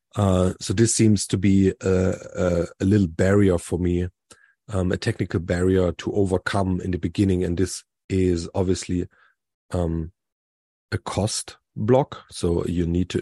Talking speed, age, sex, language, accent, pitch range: 150 wpm, 30-49, male, English, German, 85-100 Hz